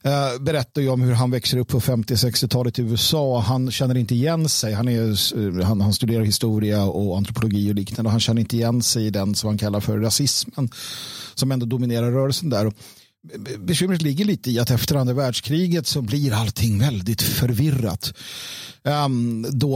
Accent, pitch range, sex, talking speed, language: native, 115-145 Hz, male, 175 wpm, Swedish